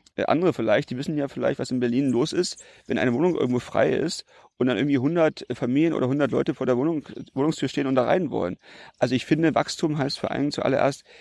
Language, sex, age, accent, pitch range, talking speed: German, male, 40-59, German, 125-160 Hz, 220 wpm